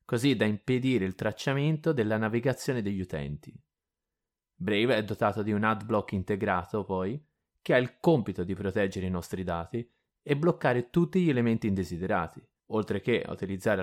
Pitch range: 100-140 Hz